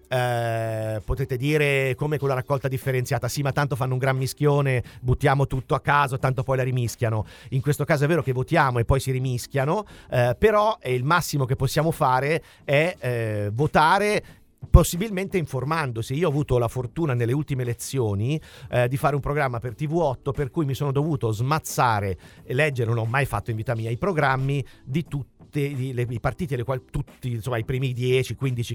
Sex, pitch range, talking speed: male, 120-150 Hz, 185 wpm